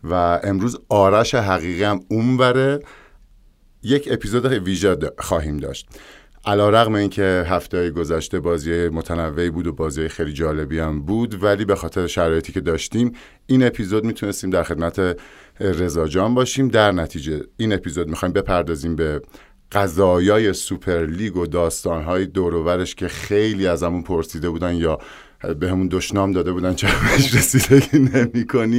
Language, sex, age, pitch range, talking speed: Persian, male, 50-69, 85-105 Hz, 145 wpm